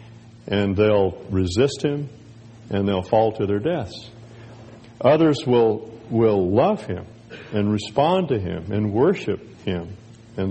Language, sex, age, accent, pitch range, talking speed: English, male, 60-79, American, 105-120 Hz, 130 wpm